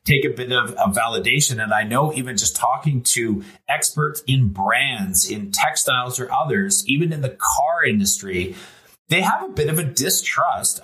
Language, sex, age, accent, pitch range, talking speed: English, male, 30-49, American, 115-150 Hz, 175 wpm